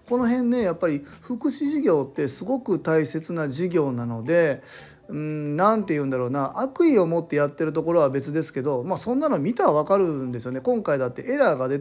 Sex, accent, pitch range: male, native, 140-225 Hz